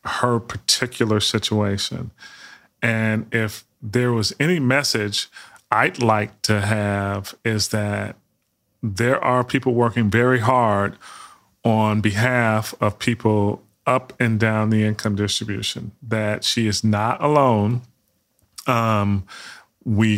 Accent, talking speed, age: American, 115 wpm, 30-49